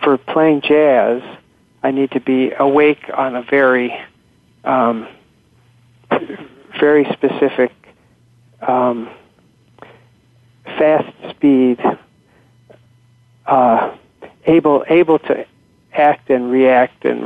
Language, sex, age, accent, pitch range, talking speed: English, male, 50-69, American, 125-145 Hz, 85 wpm